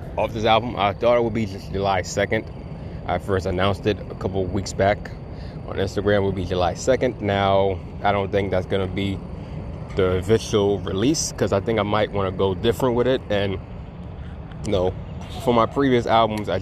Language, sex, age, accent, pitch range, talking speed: English, male, 20-39, American, 95-110 Hz, 205 wpm